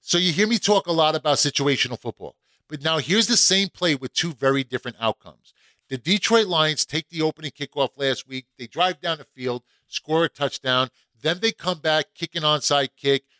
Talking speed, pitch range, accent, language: 205 wpm, 125-165 Hz, American, English